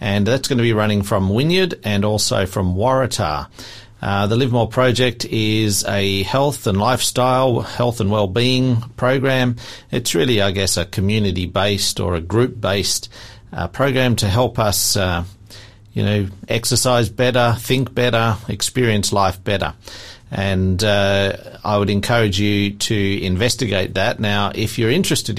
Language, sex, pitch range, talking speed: English, male, 95-120 Hz, 150 wpm